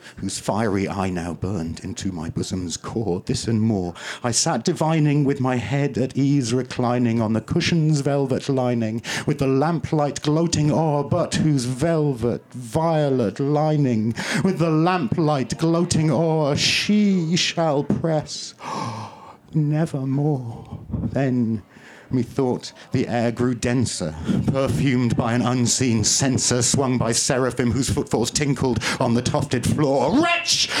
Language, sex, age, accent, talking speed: English, male, 50-69, British, 130 wpm